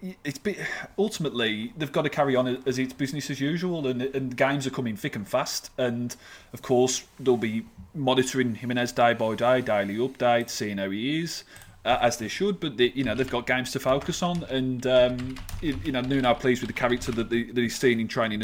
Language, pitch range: English, 110-130 Hz